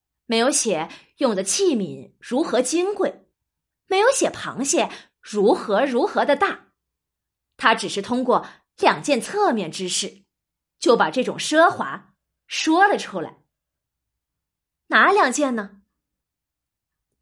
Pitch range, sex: 250-385 Hz, female